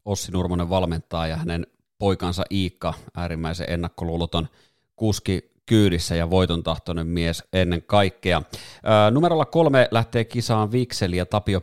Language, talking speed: Finnish, 120 wpm